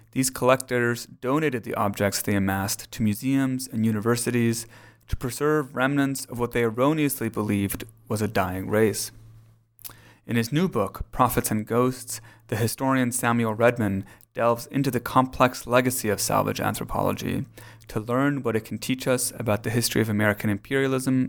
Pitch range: 110-125 Hz